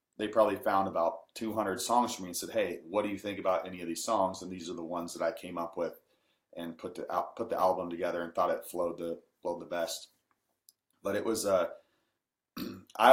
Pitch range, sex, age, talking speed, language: 90-110 Hz, male, 30-49, 230 wpm, English